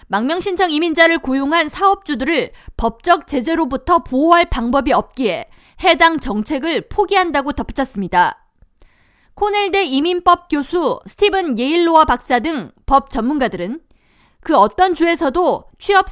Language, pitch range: Korean, 270-355 Hz